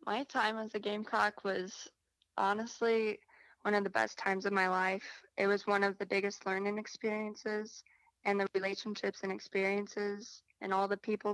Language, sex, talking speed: English, female, 170 wpm